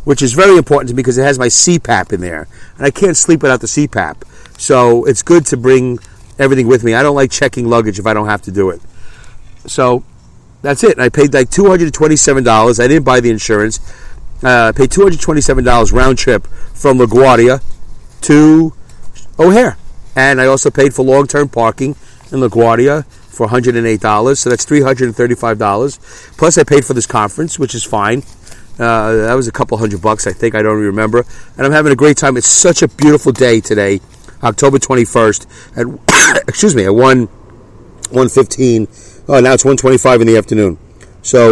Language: English